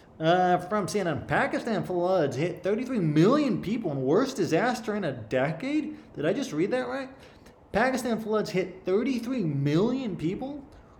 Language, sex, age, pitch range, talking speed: English, male, 20-39, 120-170 Hz, 140 wpm